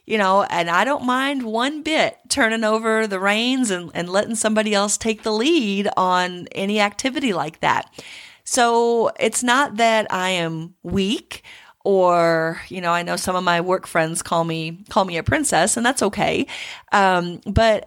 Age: 30-49